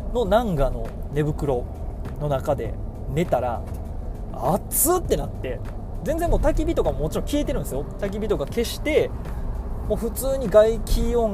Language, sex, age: Japanese, male, 20-39